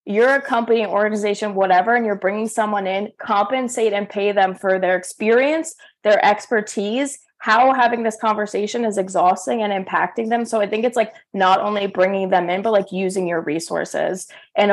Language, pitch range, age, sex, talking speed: English, 180-225 Hz, 20-39, female, 180 wpm